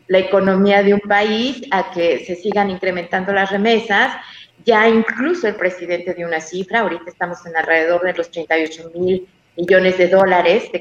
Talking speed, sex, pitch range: 170 wpm, female, 180-215 Hz